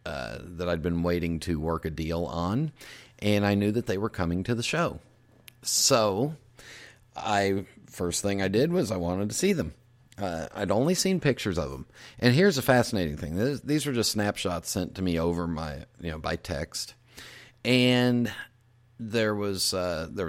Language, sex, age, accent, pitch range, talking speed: English, male, 40-59, American, 90-120 Hz, 185 wpm